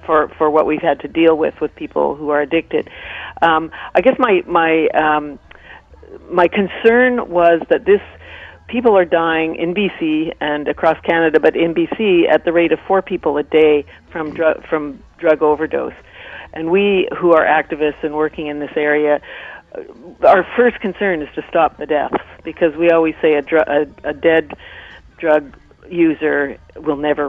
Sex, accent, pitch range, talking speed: female, American, 150-180 Hz, 170 wpm